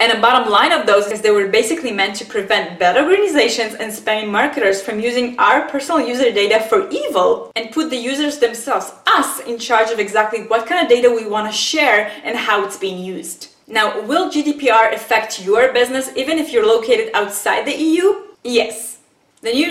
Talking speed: 200 wpm